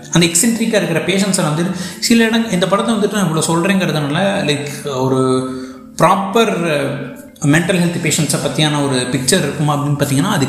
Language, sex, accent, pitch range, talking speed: Tamil, male, native, 165-215 Hz, 145 wpm